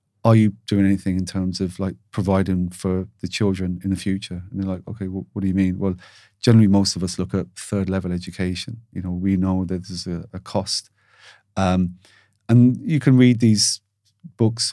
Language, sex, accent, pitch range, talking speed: English, male, British, 95-110 Hz, 205 wpm